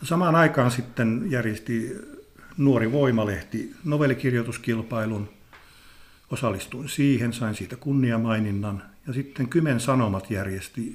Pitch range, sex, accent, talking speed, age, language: 105-125 Hz, male, native, 100 wpm, 50-69, Finnish